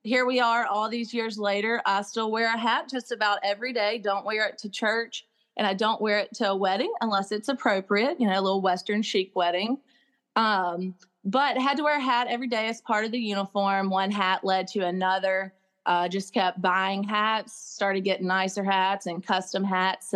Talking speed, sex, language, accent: 210 wpm, female, English, American